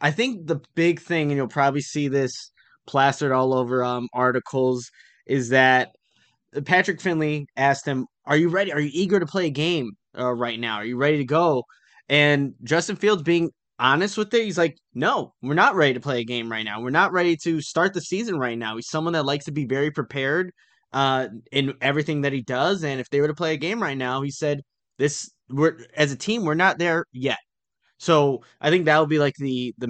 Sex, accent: male, American